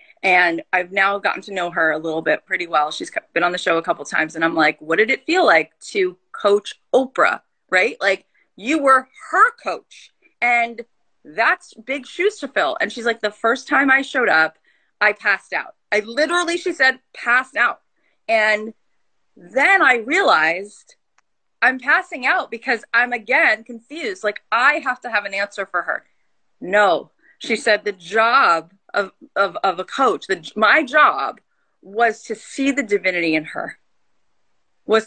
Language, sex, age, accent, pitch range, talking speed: English, female, 30-49, American, 190-275 Hz, 175 wpm